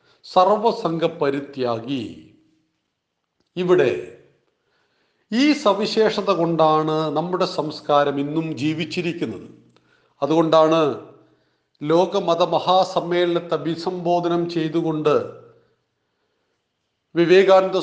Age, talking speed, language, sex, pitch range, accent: 40-59, 55 wpm, Malayalam, male, 165-200 Hz, native